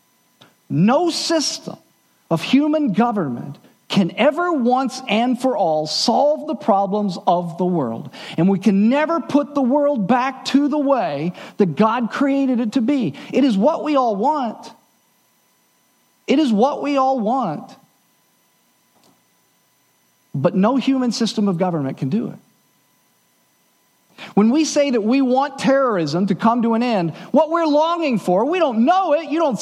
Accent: American